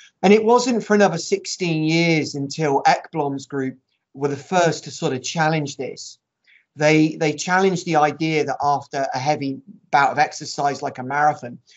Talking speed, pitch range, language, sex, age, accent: 170 wpm, 140-170 Hz, English, male, 30-49, British